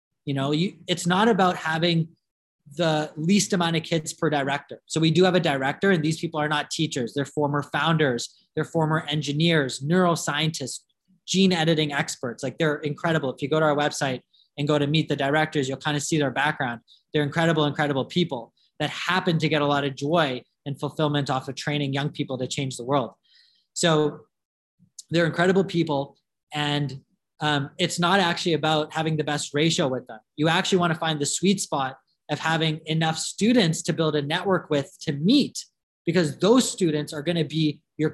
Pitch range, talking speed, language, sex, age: 145-170 Hz, 190 wpm, English, male, 20-39